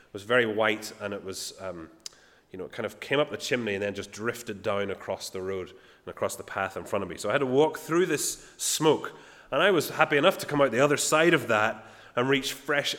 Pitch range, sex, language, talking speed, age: 105-150 Hz, male, English, 260 wpm, 30-49